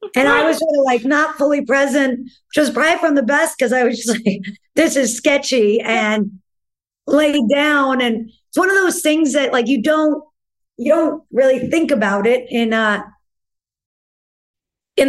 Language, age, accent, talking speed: English, 50-69, American, 175 wpm